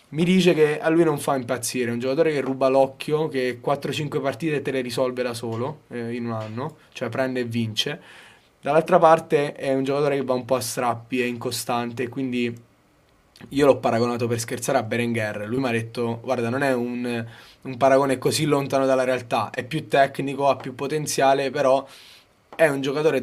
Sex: male